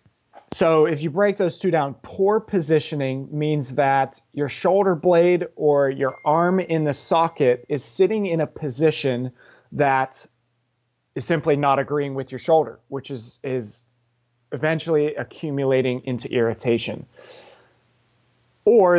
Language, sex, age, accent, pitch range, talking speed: English, male, 30-49, American, 125-155 Hz, 130 wpm